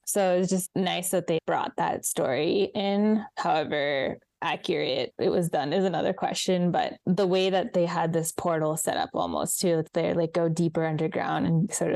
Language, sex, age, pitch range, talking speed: English, female, 10-29, 170-190 Hz, 190 wpm